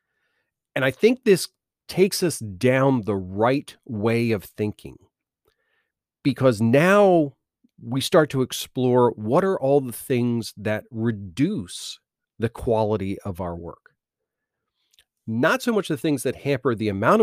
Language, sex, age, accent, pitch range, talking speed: English, male, 40-59, American, 105-145 Hz, 135 wpm